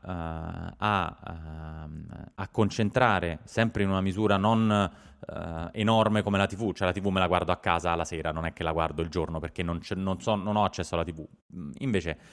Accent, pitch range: native, 90-115 Hz